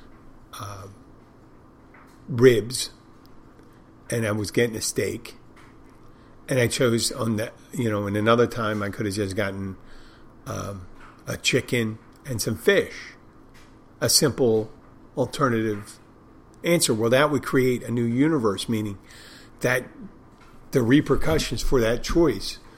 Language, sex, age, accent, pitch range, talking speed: English, male, 50-69, American, 110-125 Hz, 125 wpm